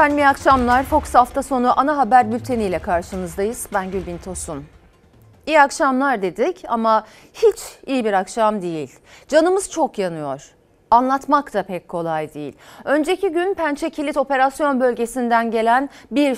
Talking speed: 140 wpm